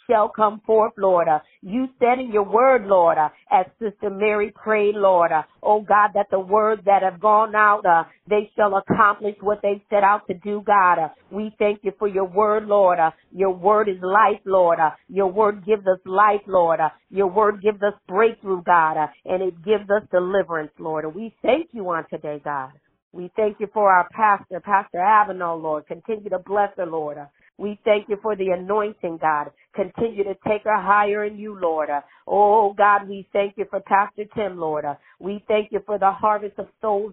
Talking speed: 205 wpm